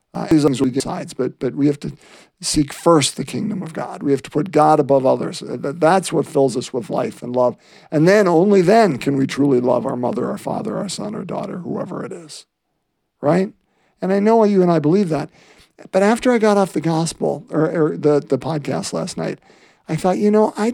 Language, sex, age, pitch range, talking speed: English, male, 50-69, 140-190 Hz, 210 wpm